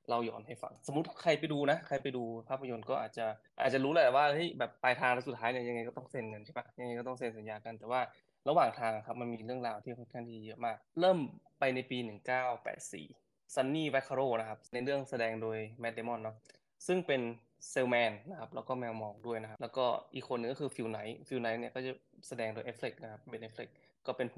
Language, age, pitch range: Thai, 20-39, 115-130 Hz